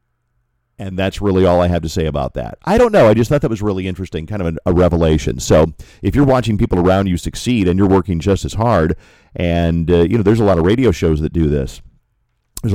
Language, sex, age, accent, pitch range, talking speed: English, male, 40-59, American, 85-105 Hz, 250 wpm